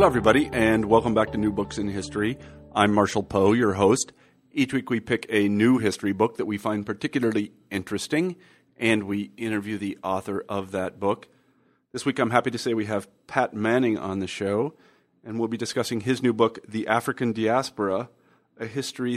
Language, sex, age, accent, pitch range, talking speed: English, male, 40-59, American, 100-115 Hz, 190 wpm